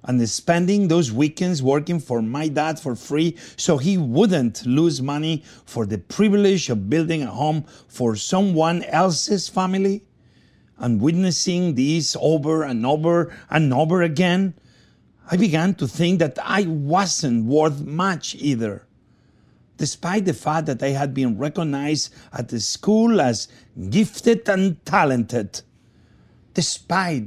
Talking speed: 135 wpm